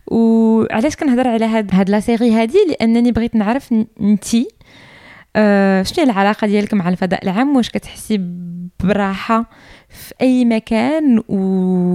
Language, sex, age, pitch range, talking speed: Arabic, female, 20-39, 175-220 Hz, 130 wpm